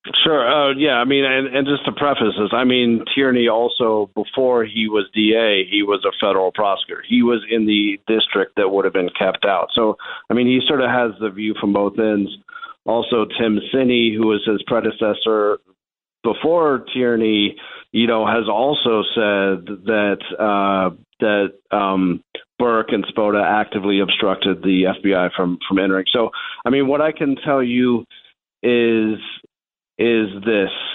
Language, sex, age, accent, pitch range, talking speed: English, male, 40-59, American, 105-120 Hz, 165 wpm